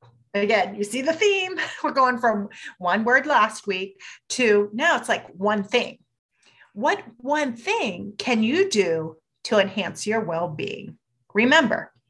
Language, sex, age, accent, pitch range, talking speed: English, female, 40-59, American, 175-275 Hz, 145 wpm